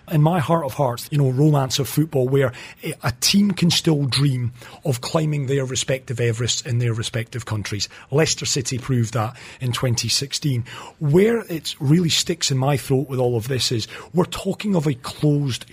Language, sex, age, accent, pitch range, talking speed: English, male, 40-59, British, 130-170 Hz, 185 wpm